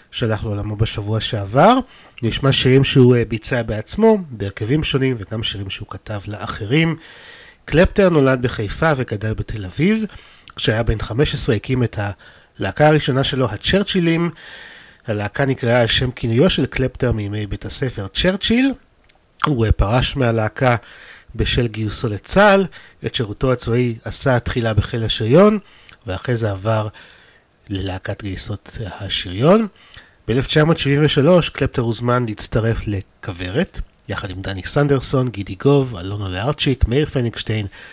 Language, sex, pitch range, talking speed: Hebrew, male, 105-145 Hz, 120 wpm